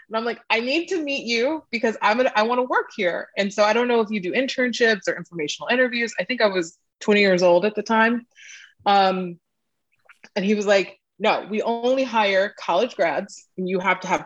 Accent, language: American, English